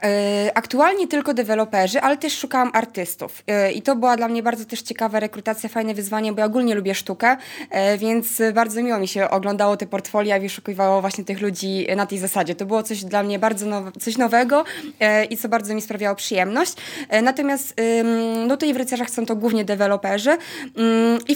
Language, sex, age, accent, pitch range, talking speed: Polish, female, 20-39, native, 205-255 Hz, 180 wpm